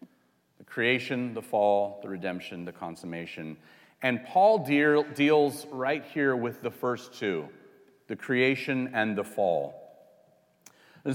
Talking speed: 120 wpm